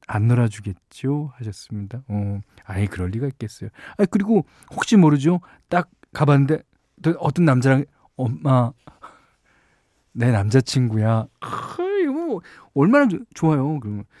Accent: native